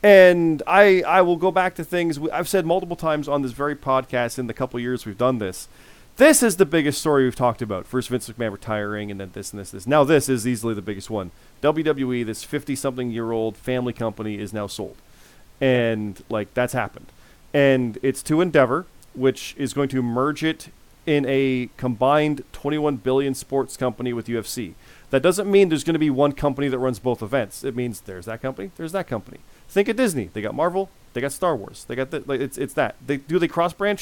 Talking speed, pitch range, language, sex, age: 225 wpm, 120-160 Hz, English, male, 30-49